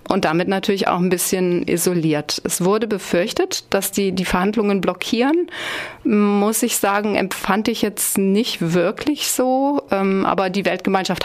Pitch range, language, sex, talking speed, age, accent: 175-210 Hz, German, female, 145 wpm, 40-59, German